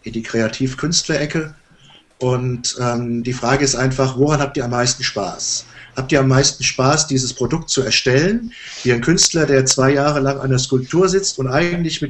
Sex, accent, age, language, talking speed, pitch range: male, German, 50-69, English, 190 wpm, 130-160 Hz